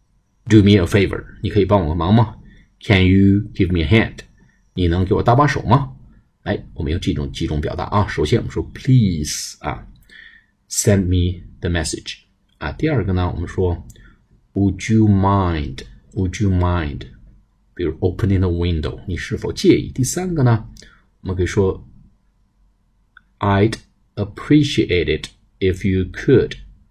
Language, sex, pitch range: Chinese, male, 90-105 Hz